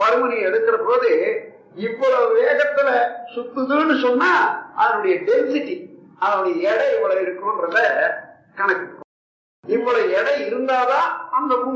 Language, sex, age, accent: Tamil, male, 50-69, native